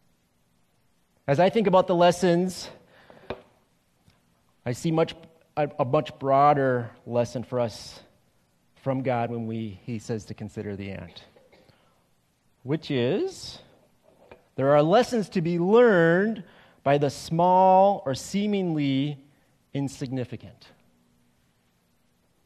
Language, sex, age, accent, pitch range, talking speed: English, male, 30-49, American, 130-200 Hz, 105 wpm